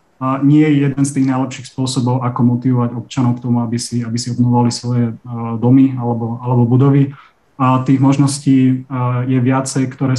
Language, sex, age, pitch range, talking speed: Slovak, male, 30-49, 120-135 Hz, 185 wpm